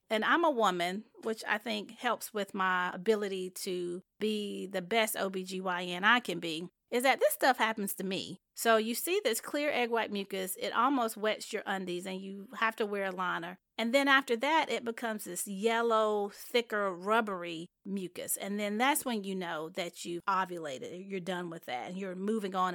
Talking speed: 195 wpm